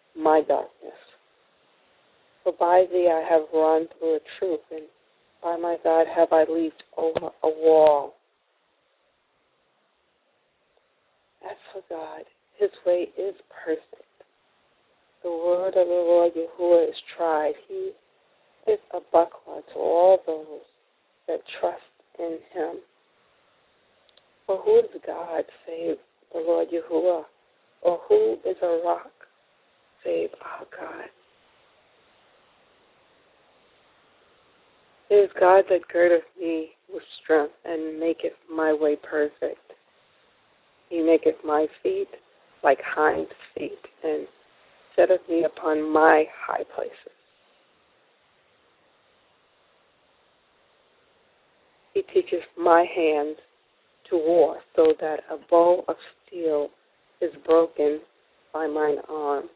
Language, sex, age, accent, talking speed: English, female, 50-69, American, 110 wpm